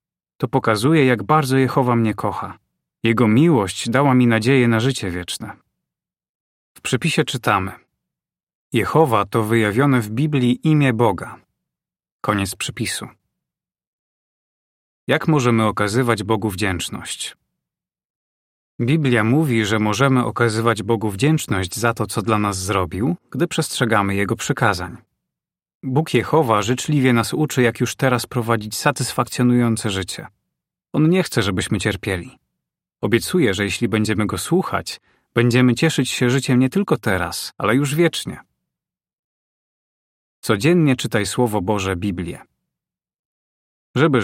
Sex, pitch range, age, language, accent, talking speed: male, 105-135 Hz, 30-49, Polish, native, 120 wpm